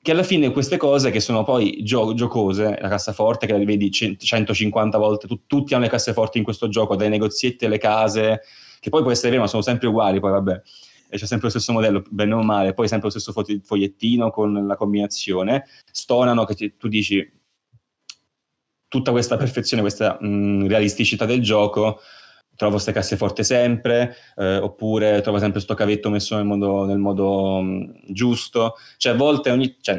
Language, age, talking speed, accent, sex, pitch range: Italian, 20-39, 190 wpm, native, male, 100-115 Hz